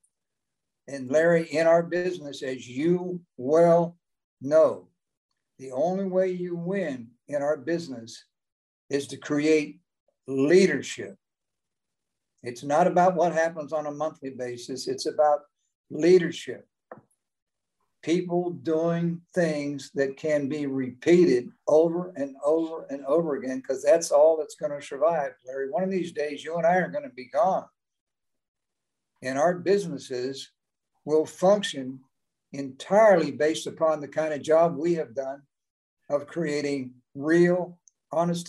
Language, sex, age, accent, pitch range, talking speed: English, male, 60-79, American, 140-170 Hz, 130 wpm